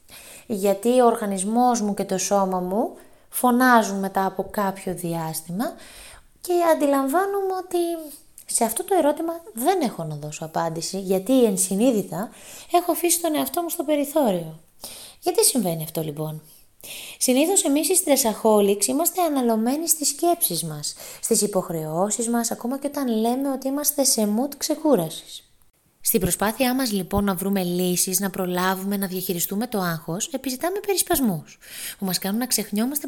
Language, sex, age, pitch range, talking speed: Greek, female, 20-39, 185-260 Hz, 145 wpm